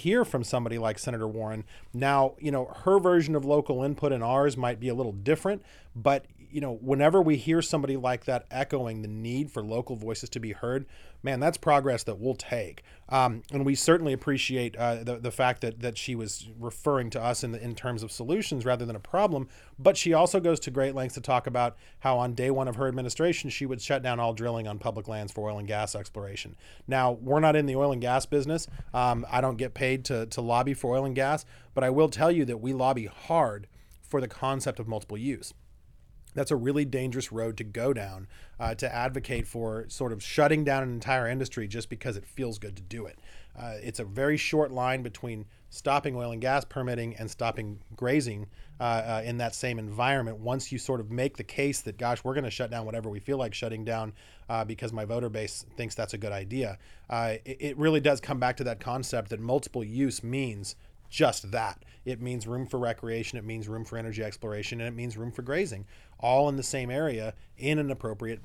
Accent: American